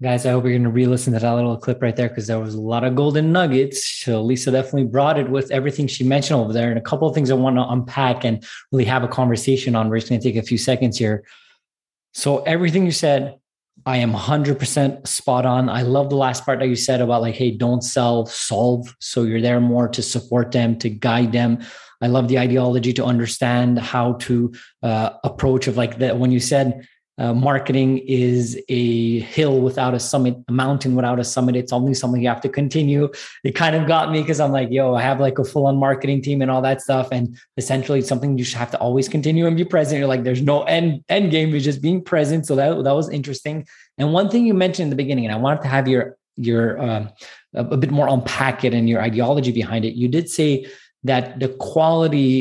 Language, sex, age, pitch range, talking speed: English, male, 20-39, 120-140 Hz, 235 wpm